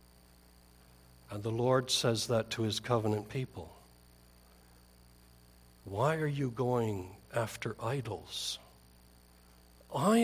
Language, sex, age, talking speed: English, male, 60-79, 95 wpm